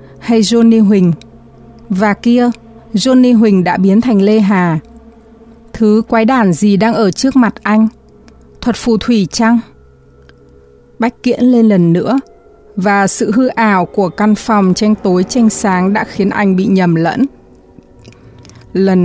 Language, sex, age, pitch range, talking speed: Vietnamese, female, 20-39, 175-220 Hz, 150 wpm